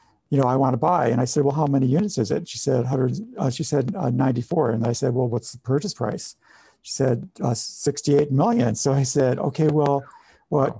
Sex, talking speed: male, 235 wpm